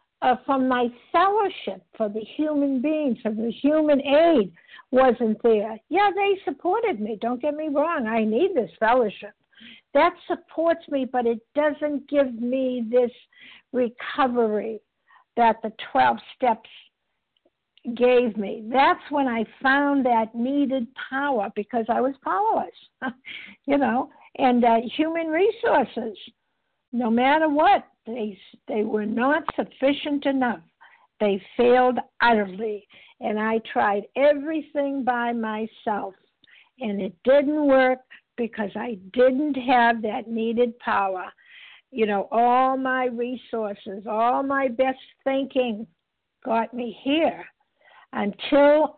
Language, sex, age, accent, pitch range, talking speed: English, female, 60-79, American, 225-285 Hz, 125 wpm